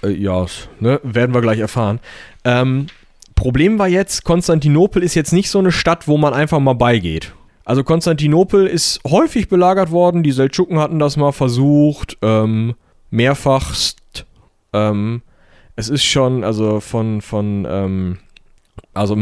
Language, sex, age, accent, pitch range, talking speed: German, male, 30-49, German, 115-145 Hz, 140 wpm